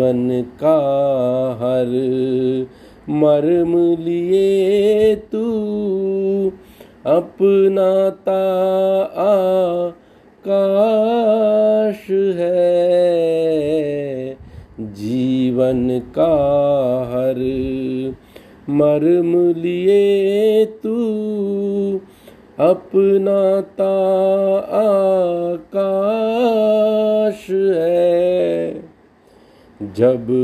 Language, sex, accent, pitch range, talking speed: Hindi, male, native, 130-195 Hz, 40 wpm